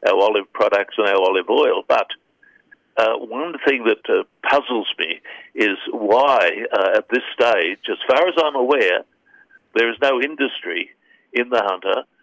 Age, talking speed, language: 60-79, 160 wpm, English